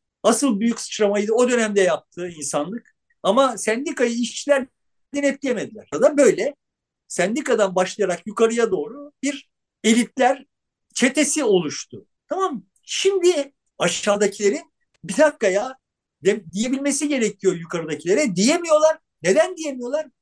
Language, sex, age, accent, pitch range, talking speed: Turkish, male, 50-69, native, 210-290 Hz, 100 wpm